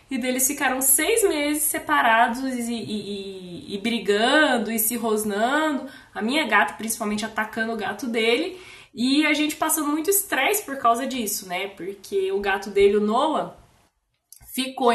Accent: Brazilian